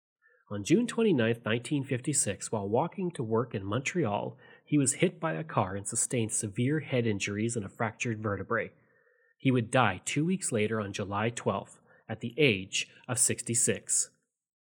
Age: 30-49